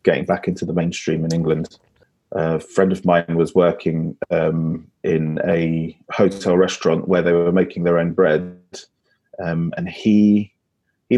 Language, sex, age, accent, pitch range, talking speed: English, male, 30-49, British, 85-100 Hz, 155 wpm